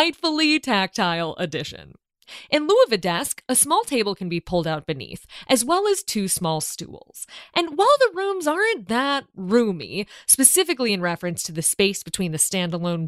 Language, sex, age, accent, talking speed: English, female, 20-39, American, 175 wpm